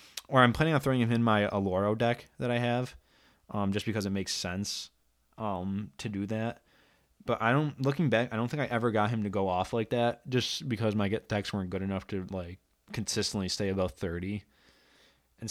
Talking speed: 215 wpm